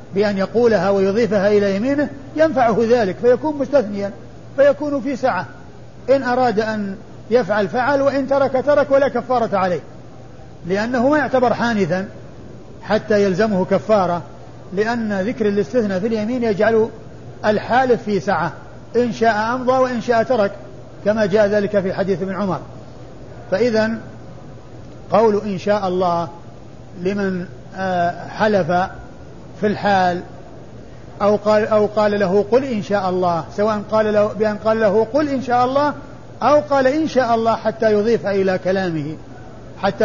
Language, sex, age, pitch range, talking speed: Arabic, male, 50-69, 185-230 Hz, 135 wpm